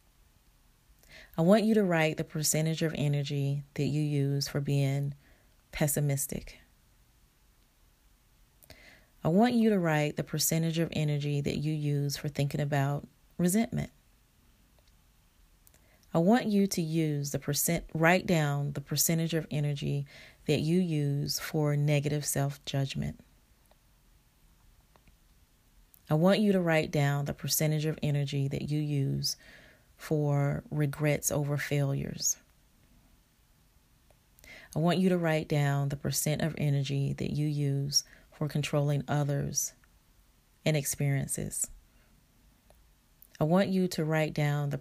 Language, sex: English, female